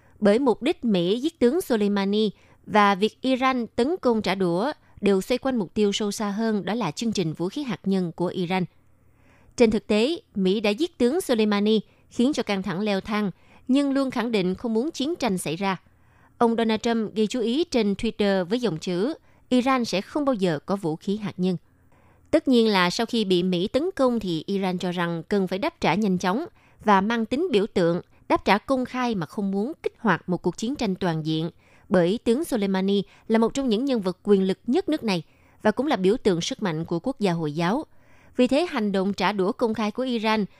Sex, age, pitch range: female, 20-39, 185-240 Hz